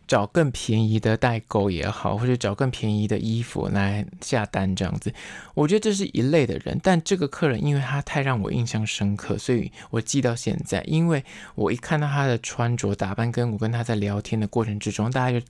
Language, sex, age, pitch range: Chinese, male, 20-39, 105-140 Hz